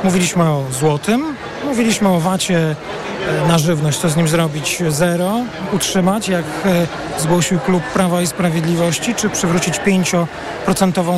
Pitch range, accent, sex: 170-200 Hz, native, male